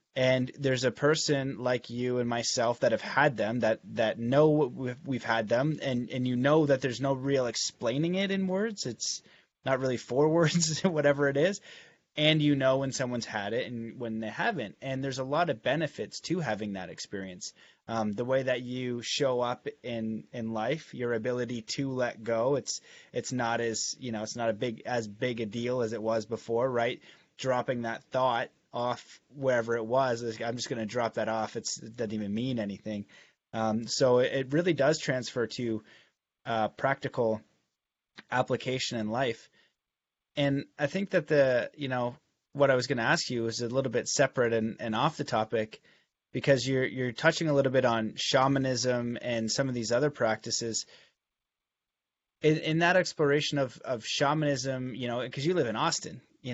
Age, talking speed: 20-39, 190 wpm